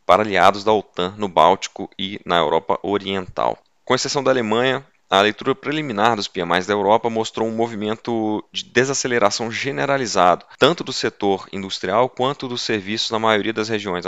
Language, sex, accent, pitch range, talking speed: Portuguese, male, Brazilian, 95-115 Hz, 160 wpm